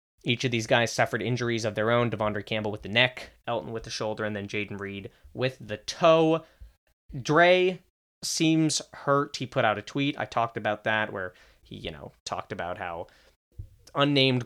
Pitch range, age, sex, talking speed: 110-140 Hz, 20-39, male, 185 wpm